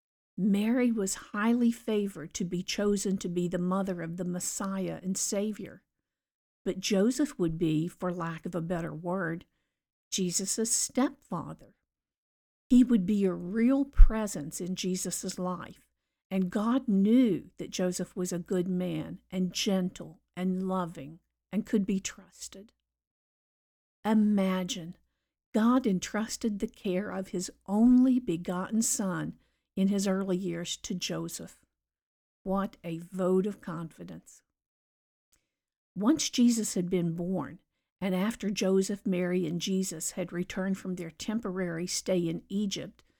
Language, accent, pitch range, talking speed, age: English, American, 180-215 Hz, 130 wpm, 50-69